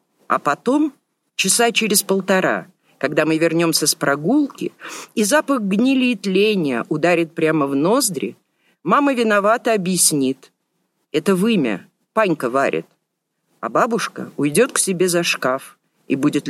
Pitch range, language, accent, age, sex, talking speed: 160-230 Hz, Russian, native, 50-69, female, 125 wpm